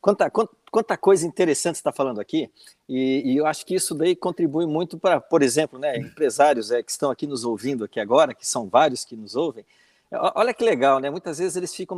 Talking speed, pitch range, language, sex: 215 wpm, 135-195 Hz, Portuguese, male